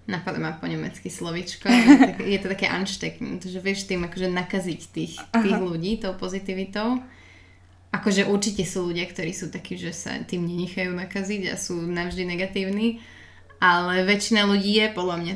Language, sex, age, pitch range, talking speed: Slovak, female, 20-39, 175-205 Hz, 170 wpm